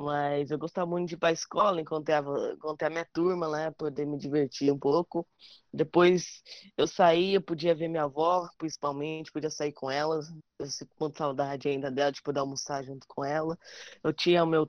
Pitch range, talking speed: 150-180 Hz, 200 wpm